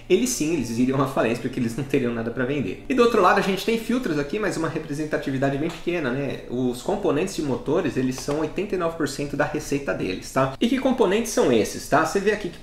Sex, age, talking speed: male, 30-49, 235 wpm